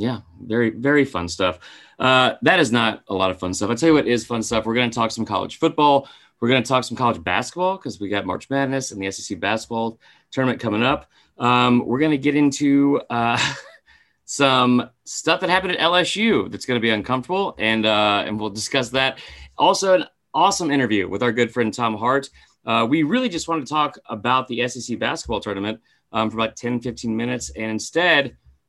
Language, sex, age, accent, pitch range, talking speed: English, male, 30-49, American, 105-135 Hz, 215 wpm